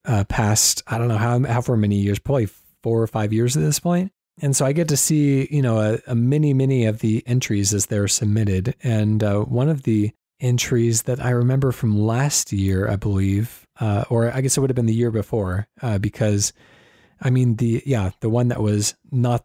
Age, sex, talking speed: 30-49, male, 220 wpm